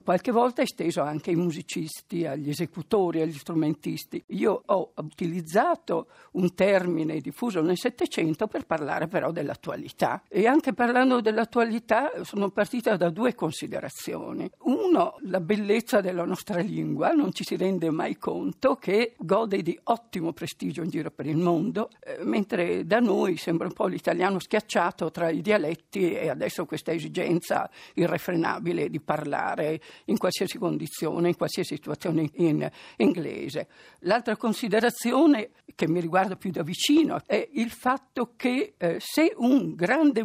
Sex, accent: female, native